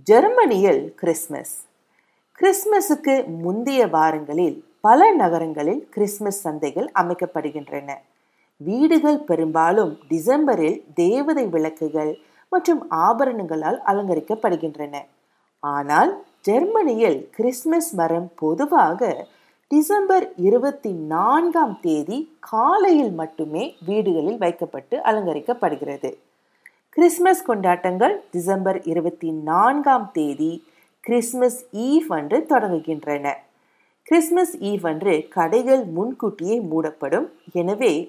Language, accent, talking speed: Tamil, native, 75 wpm